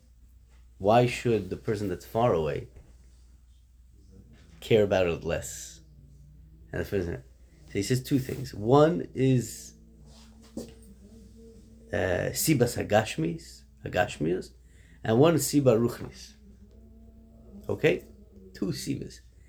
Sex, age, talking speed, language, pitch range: male, 30-49, 95 wpm, English, 75-120 Hz